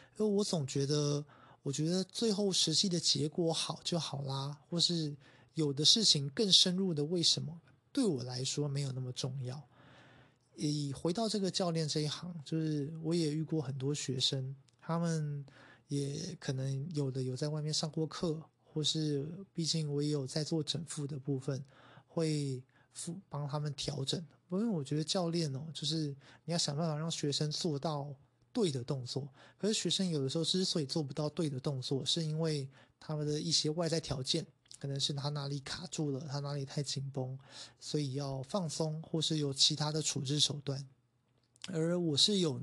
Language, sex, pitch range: Chinese, male, 140-165 Hz